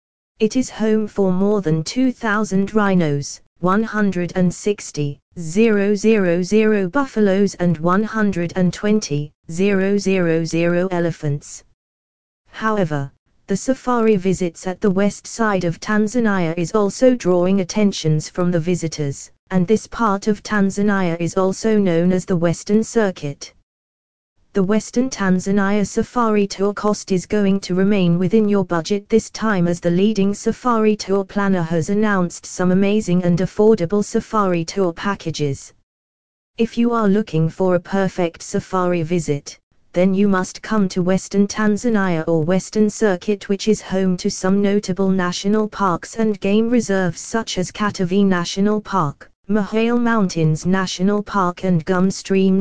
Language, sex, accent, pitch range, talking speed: English, female, British, 175-210 Hz, 130 wpm